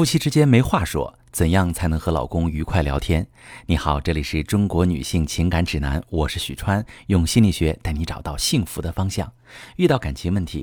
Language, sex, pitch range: Chinese, male, 85-120 Hz